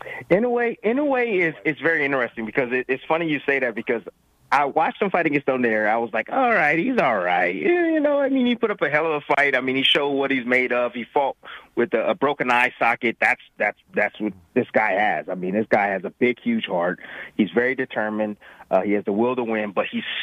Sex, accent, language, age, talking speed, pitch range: male, American, English, 30-49, 255 wpm, 110-150 Hz